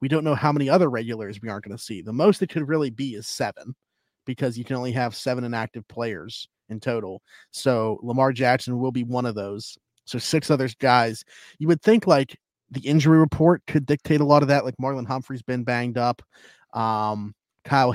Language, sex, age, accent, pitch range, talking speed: English, male, 30-49, American, 120-140 Hz, 210 wpm